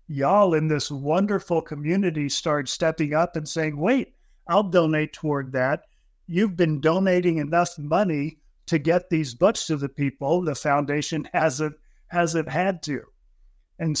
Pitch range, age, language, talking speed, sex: 140-165 Hz, 50-69, English, 145 wpm, male